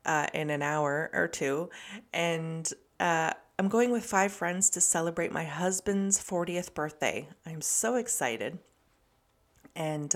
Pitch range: 155-205 Hz